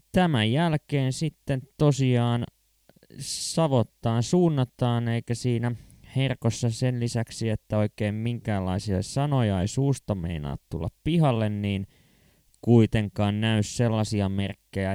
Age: 20-39